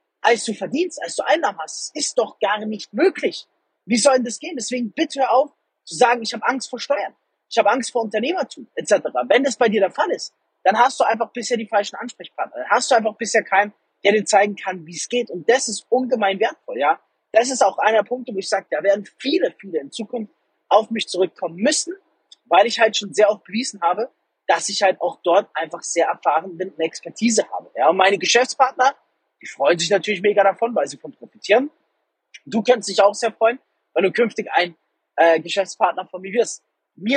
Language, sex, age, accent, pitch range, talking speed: German, male, 30-49, German, 200-255 Hz, 220 wpm